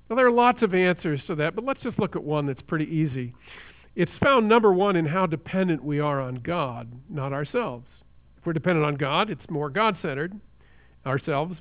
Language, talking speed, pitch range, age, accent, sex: English, 200 wpm, 140-210 Hz, 50-69, American, male